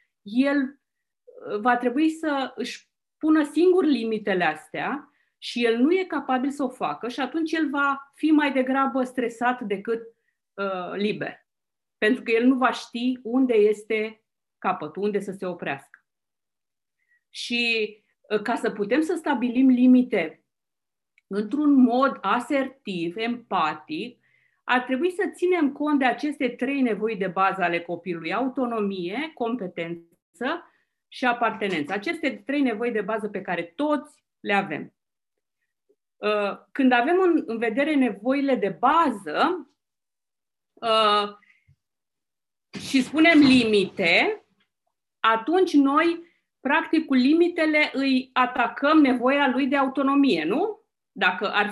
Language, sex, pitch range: Romanian, female, 215-295 Hz